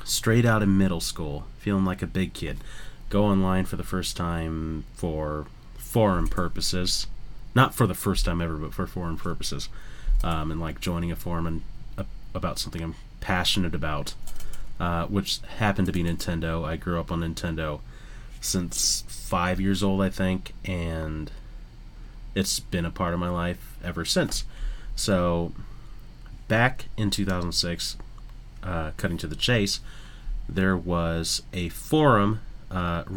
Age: 30-49